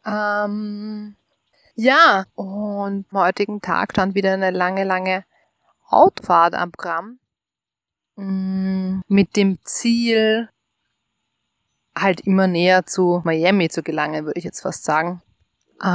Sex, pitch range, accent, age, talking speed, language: female, 175-210 Hz, German, 20-39, 105 wpm, German